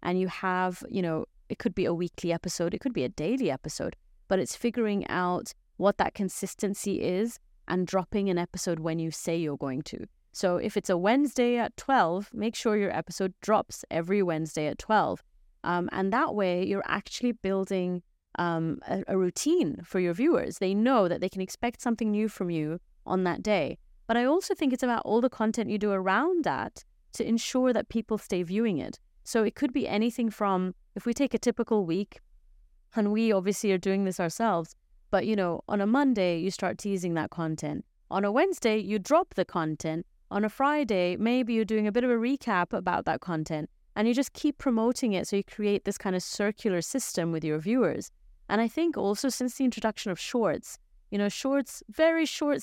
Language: English